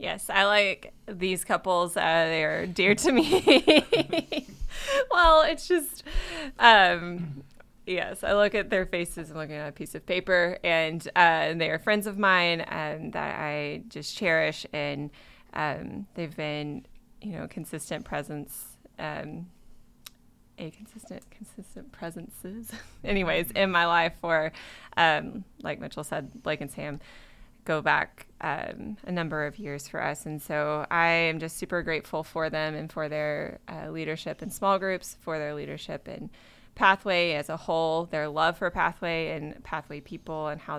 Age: 20-39